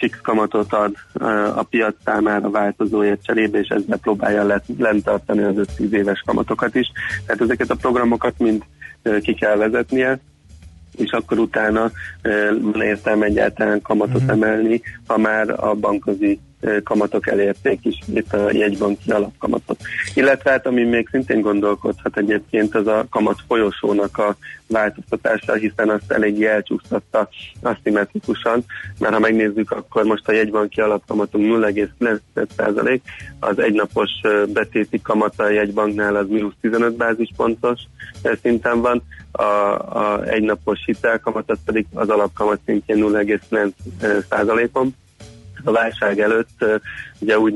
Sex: male